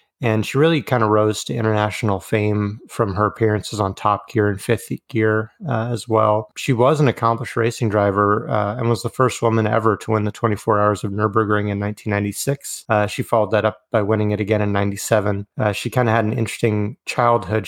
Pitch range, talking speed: 105-115 Hz, 210 wpm